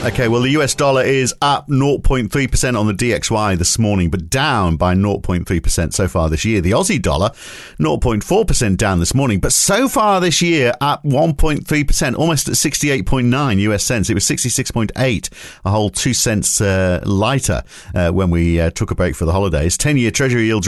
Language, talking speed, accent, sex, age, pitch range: English, 180 wpm, British, male, 50-69, 90-120 Hz